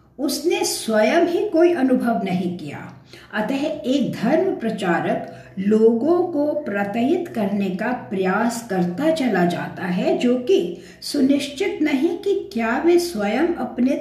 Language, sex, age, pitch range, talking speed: English, female, 60-79, 195-275 Hz, 130 wpm